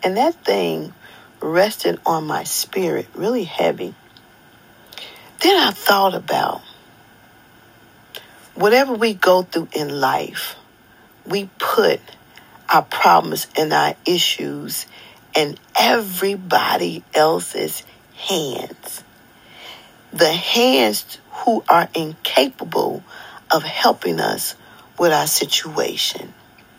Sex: female